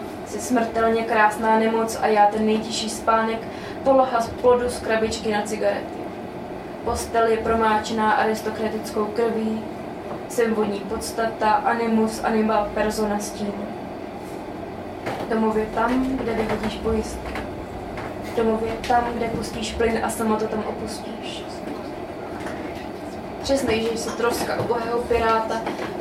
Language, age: Czech, 20-39